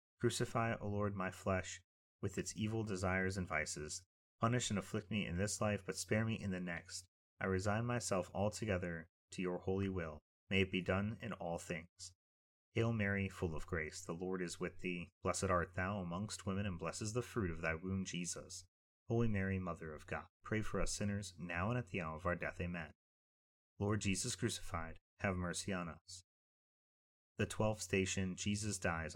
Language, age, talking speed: English, 30-49, 190 wpm